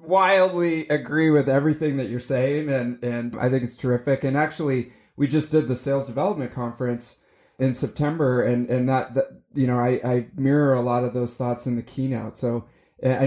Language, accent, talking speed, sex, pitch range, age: English, American, 195 wpm, male, 120-140 Hz, 30-49